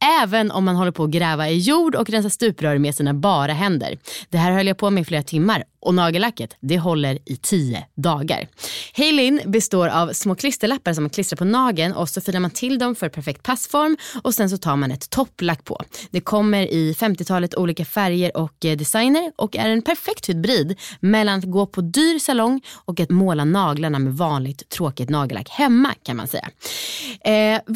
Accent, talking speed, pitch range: native, 195 wpm, 155-215 Hz